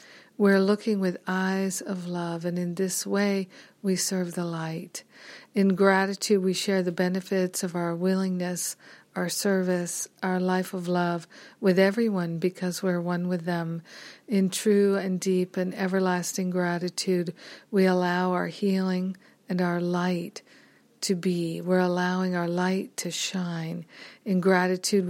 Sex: female